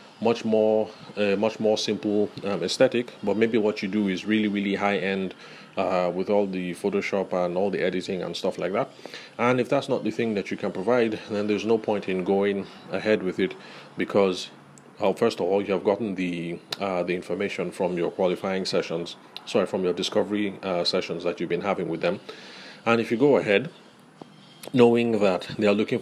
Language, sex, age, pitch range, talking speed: English, male, 30-49, 90-105 Hz, 205 wpm